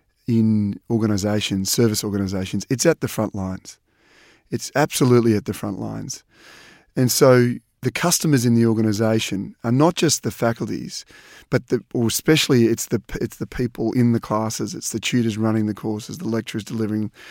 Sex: male